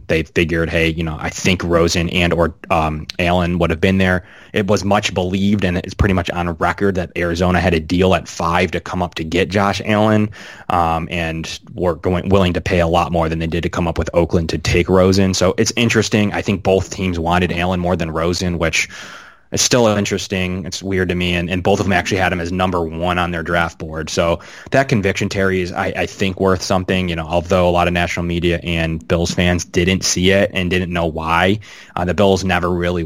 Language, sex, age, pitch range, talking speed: English, male, 20-39, 85-95 Hz, 235 wpm